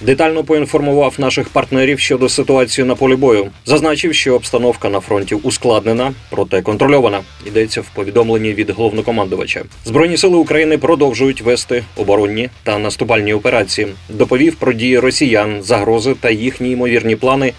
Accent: native